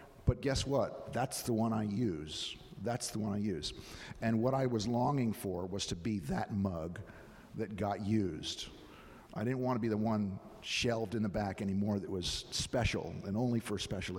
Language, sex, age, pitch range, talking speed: English, male, 50-69, 100-115 Hz, 205 wpm